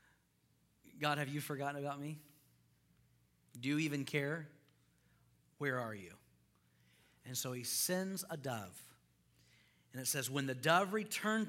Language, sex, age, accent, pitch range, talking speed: English, male, 40-59, American, 120-160 Hz, 135 wpm